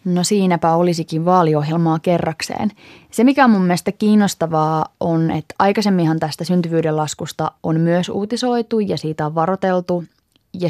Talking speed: 140 wpm